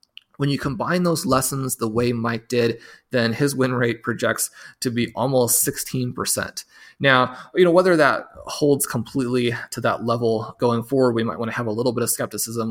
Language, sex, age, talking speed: English, male, 30-49, 190 wpm